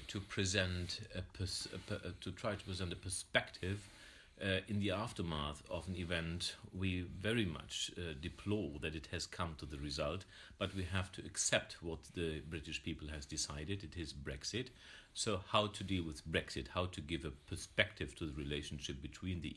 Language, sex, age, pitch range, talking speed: English, male, 50-69, 80-100 Hz, 190 wpm